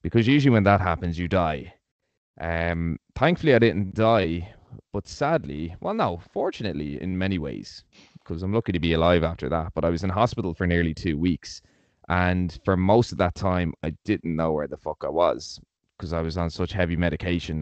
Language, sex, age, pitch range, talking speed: English, male, 20-39, 80-100 Hz, 200 wpm